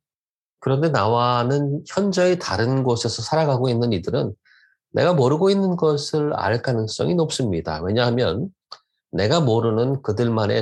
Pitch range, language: 105-145 Hz, Korean